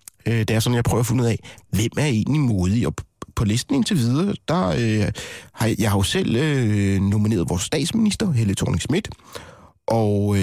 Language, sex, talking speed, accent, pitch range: Danish, male, 190 wpm, native, 95-120 Hz